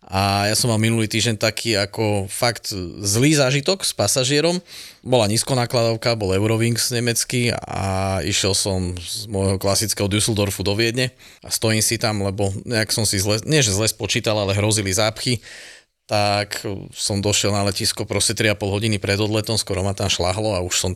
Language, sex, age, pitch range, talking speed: Slovak, male, 30-49, 100-120 Hz, 170 wpm